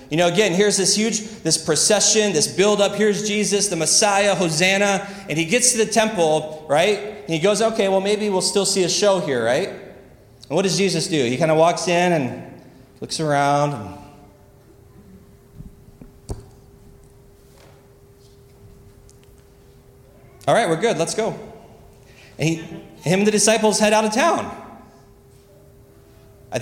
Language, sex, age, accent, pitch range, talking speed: English, male, 30-49, American, 135-200 Hz, 150 wpm